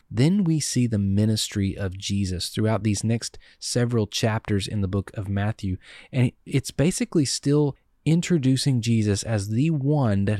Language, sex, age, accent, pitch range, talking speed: English, male, 30-49, American, 105-135 Hz, 155 wpm